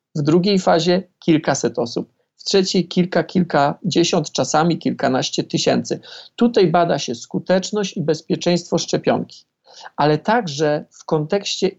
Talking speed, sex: 115 wpm, male